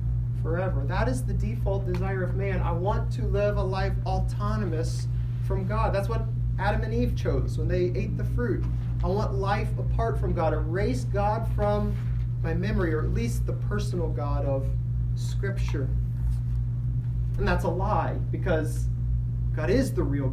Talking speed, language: 165 wpm, English